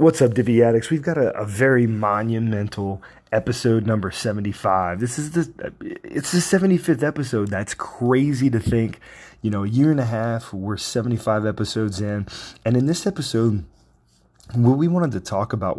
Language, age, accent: English, 20-39, American